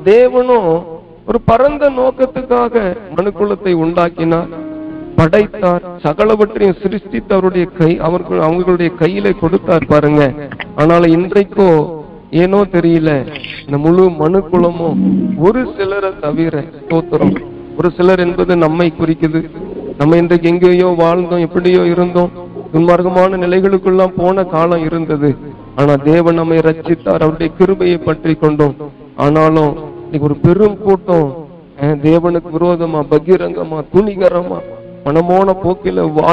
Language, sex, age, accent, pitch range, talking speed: Tamil, male, 50-69, native, 160-210 Hz, 75 wpm